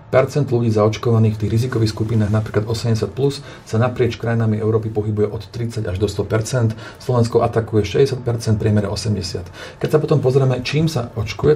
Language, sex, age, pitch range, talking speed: Slovak, male, 40-59, 105-120 Hz, 155 wpm